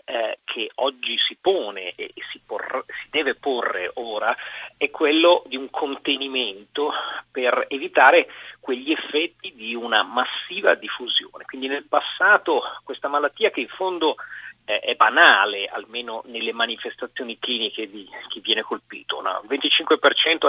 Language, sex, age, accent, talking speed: Italian, male, 40-59, native, 130 wpm